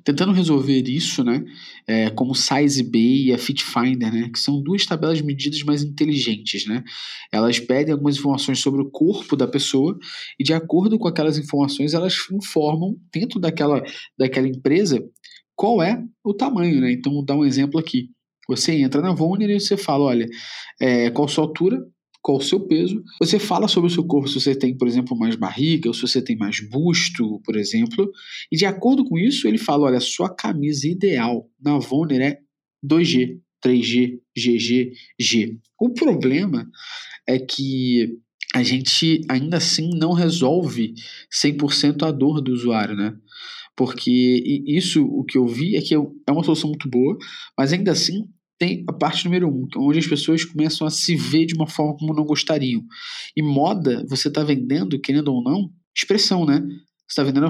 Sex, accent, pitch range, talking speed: male, Brazilian, 130-165 Hz, 180 wpm